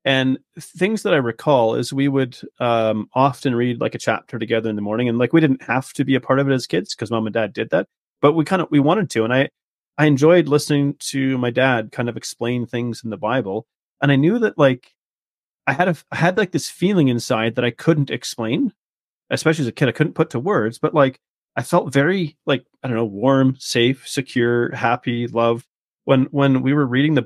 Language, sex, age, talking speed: English, male, 30-49, 235 wpm